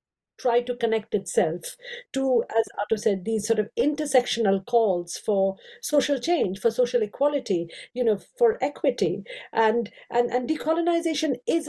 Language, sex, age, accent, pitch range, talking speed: English, female, 50-69, Indian, 210-275 Hz, 145 wpm